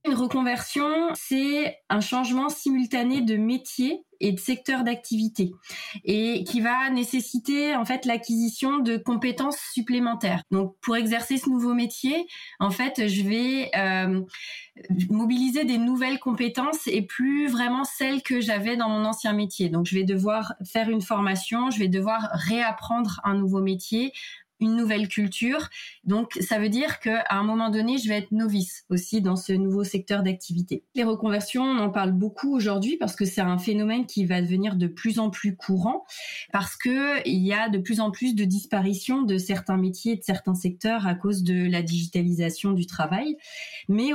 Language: French